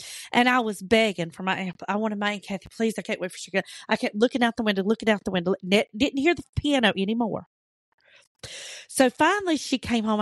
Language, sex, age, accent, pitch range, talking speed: English, female, 40-59, American, 195-265 Hz, 230 wpm